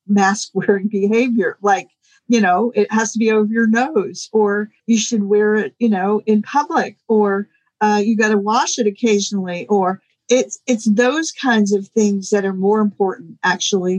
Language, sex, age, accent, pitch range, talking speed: English, female, 50-69, American, 205-245 Hz, 180 wpm